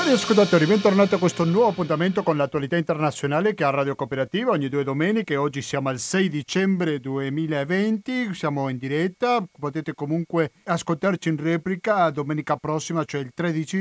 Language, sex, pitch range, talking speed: Italian, male, 140-180 Hz, 160 wpm